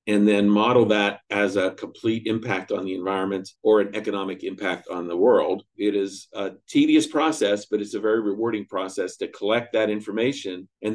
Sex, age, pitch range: male, 50-69, 100-120 Hz